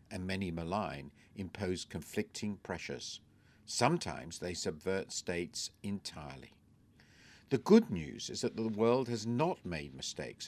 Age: 50-69